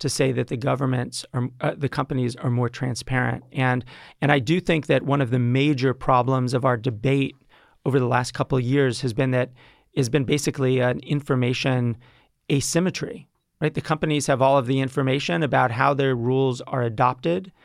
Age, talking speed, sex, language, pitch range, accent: 30-49, 185 wpm, male, English, 130-155 Hz, American